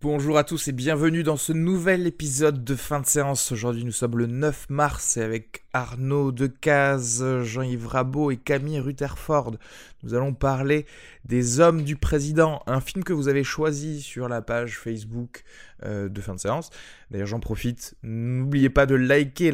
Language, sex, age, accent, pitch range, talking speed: French, male, 20-39, French, 115-145 Hz, 170 wpm